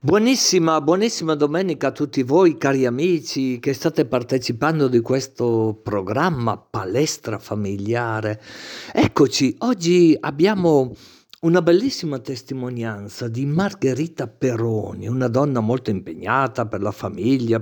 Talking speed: 110 wpm